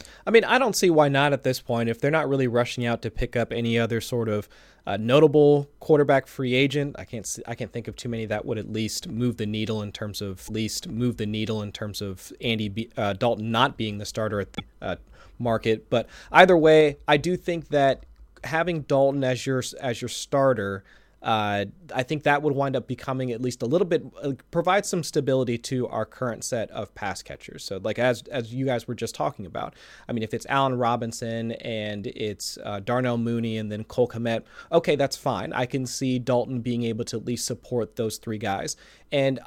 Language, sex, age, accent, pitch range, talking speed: English, male, 30-49, American, 110-140 Hz, 220 wpm